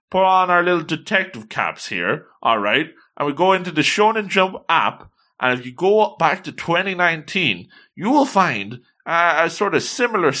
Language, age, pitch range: English, 30-49, 135-185 Hz